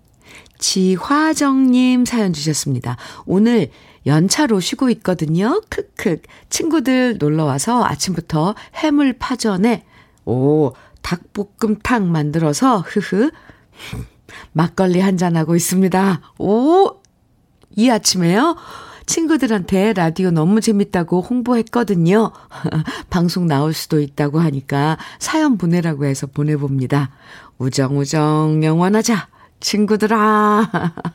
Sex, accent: female, native